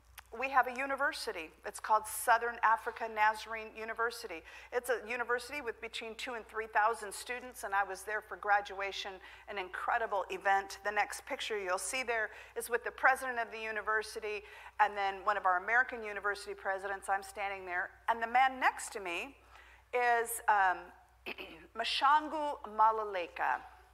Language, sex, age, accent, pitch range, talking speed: English, female, 50-69, American, 205-275 Hz, 155 wpm